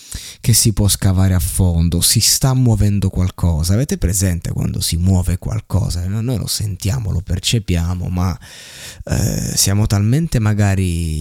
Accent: native